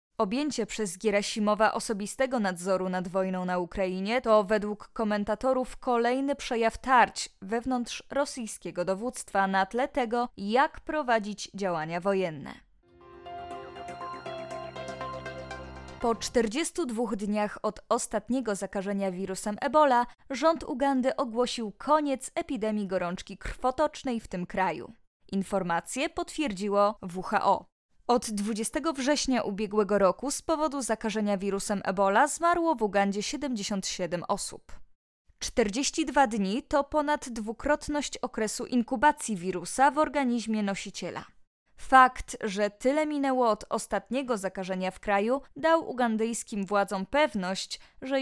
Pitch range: 200-270 Hz